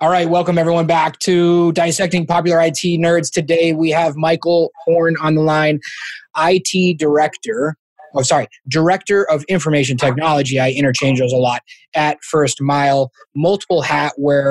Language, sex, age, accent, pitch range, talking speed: English, male, 20-39, American, 145-185 Hz, 155 wpm